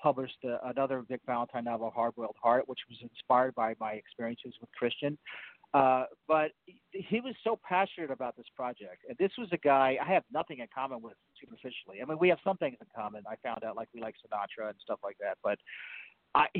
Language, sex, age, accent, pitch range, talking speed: English, male, 40-59, American, 125-170 Hz, 205 wpm